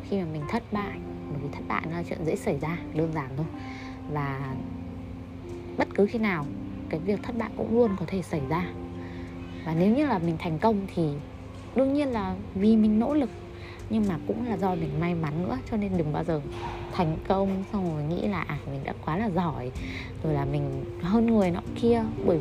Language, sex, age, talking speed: Vietnamese, female, 20-39, 215 wpm